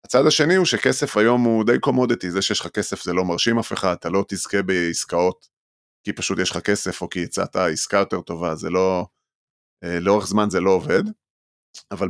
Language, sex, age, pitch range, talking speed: Hebrew, male, 30-49, 90-105 Hz, 200 wpm